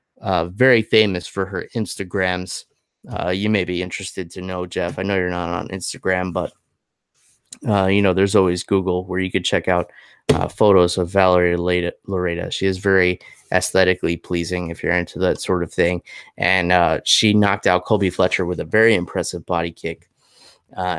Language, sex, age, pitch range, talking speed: English, male, 20-39, 90-105 Hz, 180 wpm